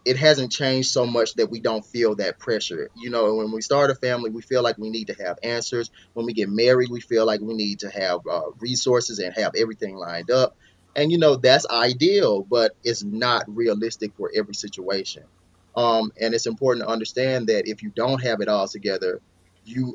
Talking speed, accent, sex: 215 wpm, American, male